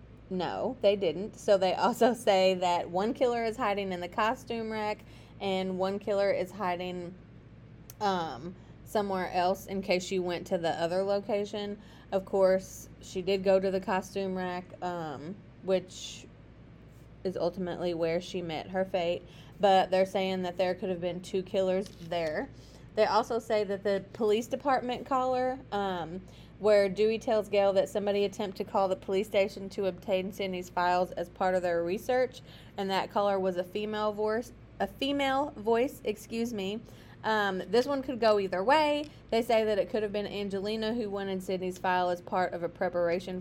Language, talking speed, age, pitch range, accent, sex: English, 175 wpm, 20-39, 180-210 Hz, American, female